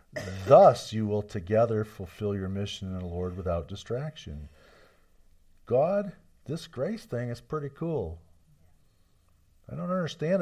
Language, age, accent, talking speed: English, 50-69, American, 125 wpm